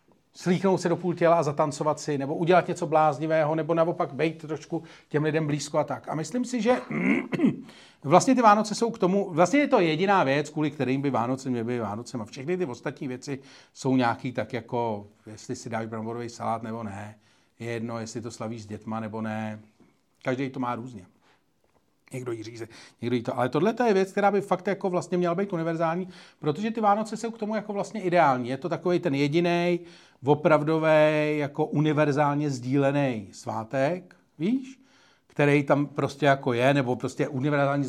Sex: male